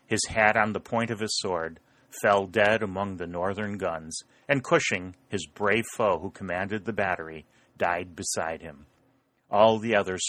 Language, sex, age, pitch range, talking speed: English, male, 30-49, 90-125 Hz, 170 wpm